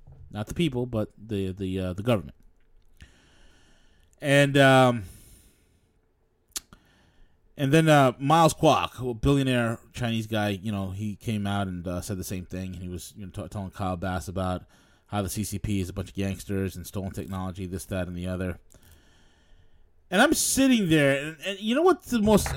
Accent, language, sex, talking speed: American, English, male, 180 wpm